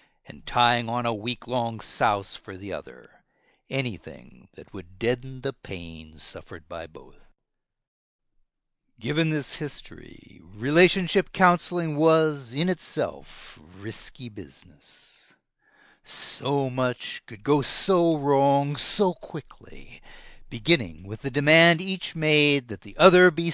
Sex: male